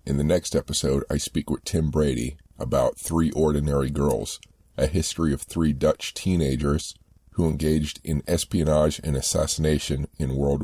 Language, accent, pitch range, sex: English, American, 70-85 Hz, male